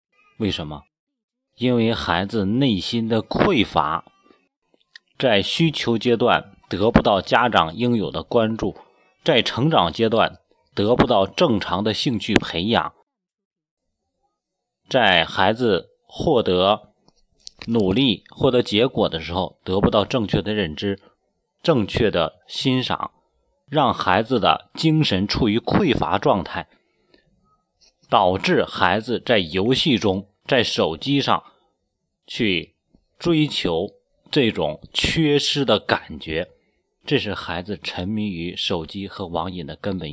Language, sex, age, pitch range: Chinese, male, 30-49, 90-135 Hz